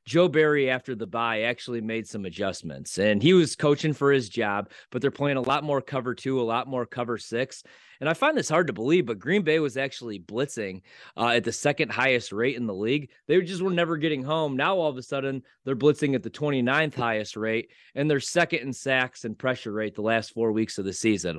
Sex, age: male, 30-49